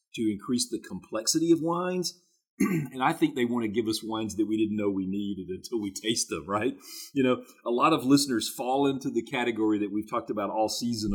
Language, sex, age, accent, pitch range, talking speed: English, male, 40-59, American, 105-135 Hz, 225 wpm